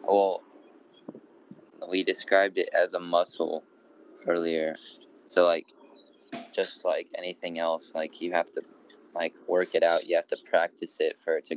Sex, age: male, 20-39